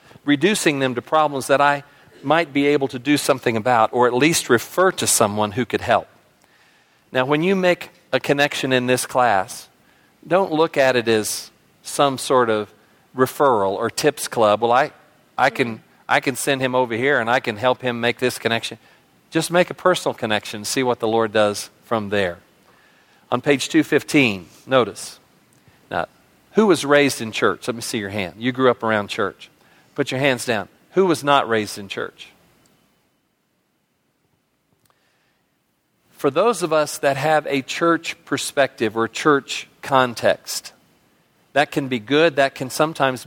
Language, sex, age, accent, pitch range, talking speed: English, male, 40-59, American, 120-150 Hz, 170 wpm